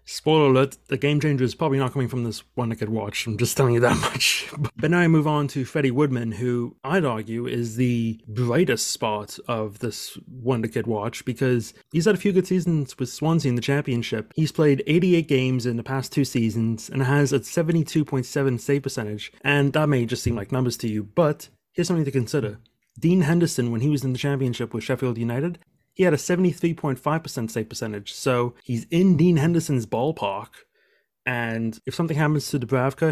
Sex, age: male, 30-49